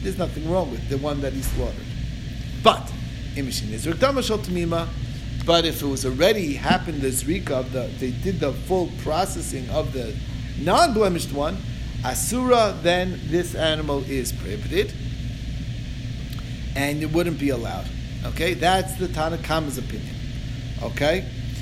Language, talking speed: English, 125 wpm